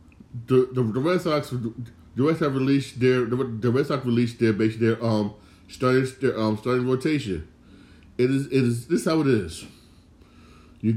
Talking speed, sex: 190 wpm, male